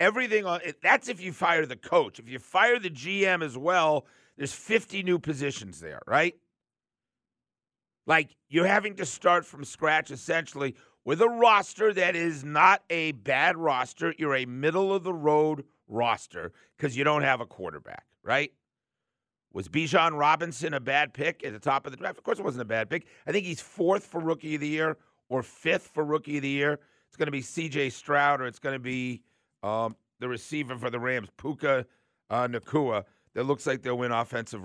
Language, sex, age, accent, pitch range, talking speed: English, male, 50-69, American, 120-160 Hz, 190 wpm